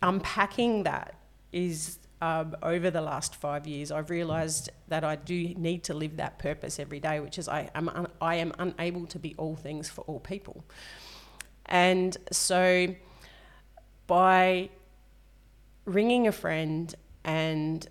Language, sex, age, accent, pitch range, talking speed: English, female, 30-49, Australian, 155-180 Hz, 145 wpm